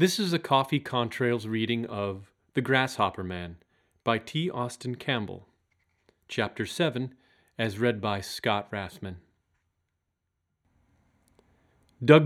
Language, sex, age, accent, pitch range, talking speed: English, male, 30-49, American, 95-130 Hz, 110 wpm